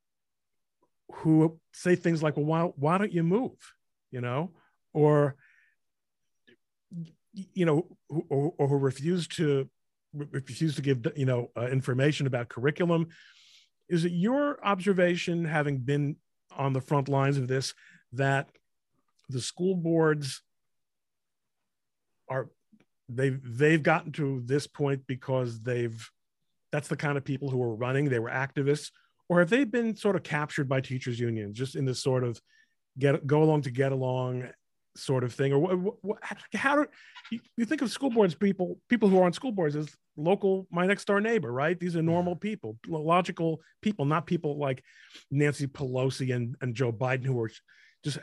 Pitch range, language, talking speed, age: 135-180 Hz, English, 160 wpm, 50-69